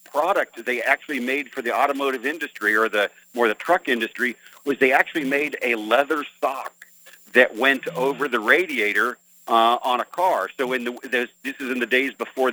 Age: 50-69